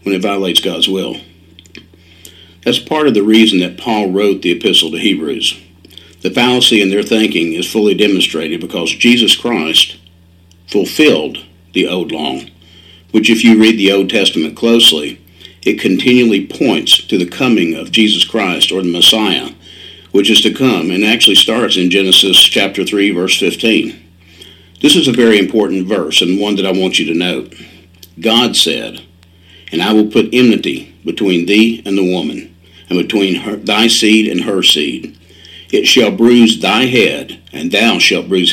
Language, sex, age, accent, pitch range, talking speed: English, male, 50-69, American, 85-110 Hz, 165 wpm